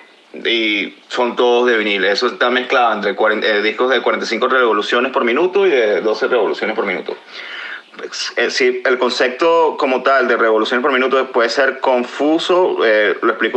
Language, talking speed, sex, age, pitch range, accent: Spanish, 170 wpm, male, 30-49, 120-185 Hz, Venezuelan